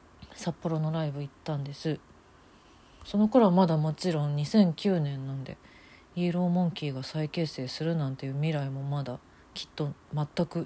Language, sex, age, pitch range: Japanese, female, 40-59, 140-185 Hz